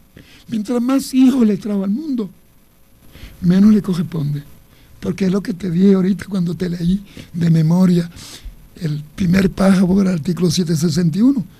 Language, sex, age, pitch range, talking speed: Spanish, male, 60-79, 170-220 Hz, 145 wpm